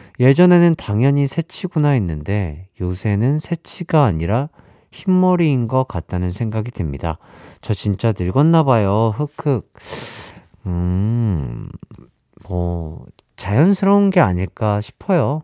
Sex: male